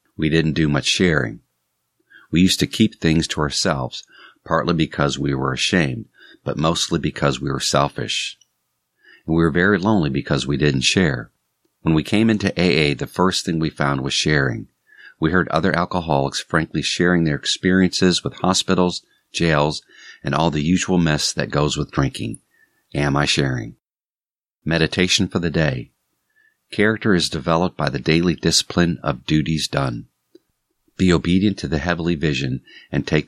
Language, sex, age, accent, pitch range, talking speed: English, male, 50-69, American, 75-90 Hz, 160 wpm